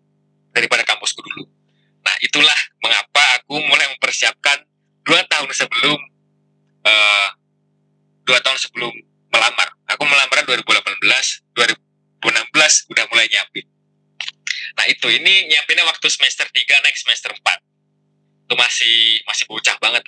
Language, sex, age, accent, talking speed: Indonesian, male, 20-39, native, 115 wpm